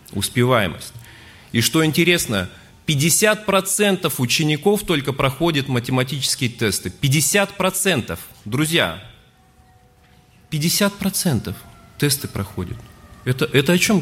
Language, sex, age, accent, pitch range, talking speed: Russian, male, 30-49, native, 100-150 Hz, 80 wpm